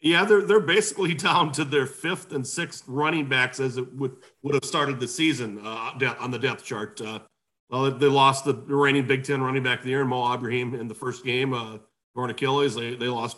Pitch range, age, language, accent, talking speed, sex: 120-145 Hz, 40-59, English, American, 225 wpm, male